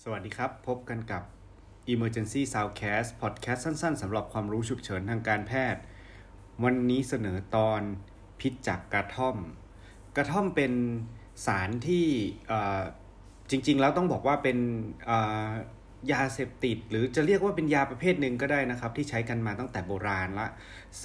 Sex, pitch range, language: male, 100-130 Hz, Thai